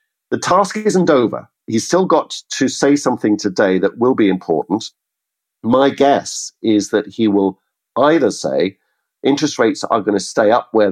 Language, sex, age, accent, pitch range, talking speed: English, male, 50-69, British, 95-105 Hz, 170 wpm